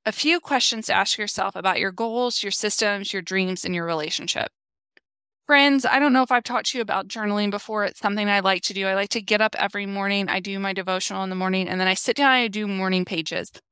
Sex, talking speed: female, 255 wpm